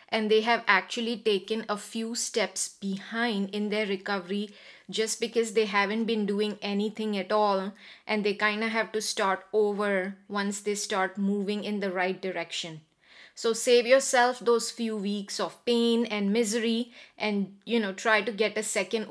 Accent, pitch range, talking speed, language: Indian, 200-230 Hz, 175 wpm, English